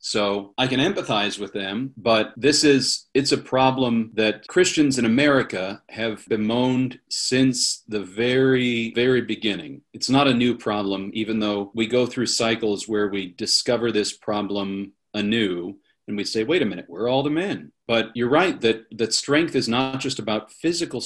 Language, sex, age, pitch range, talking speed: English, male, 40-59, 105-130 Hz, 175 wpm